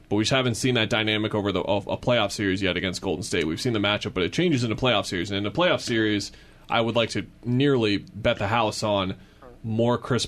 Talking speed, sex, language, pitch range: 255 wpm, male, English, 100-120 Hz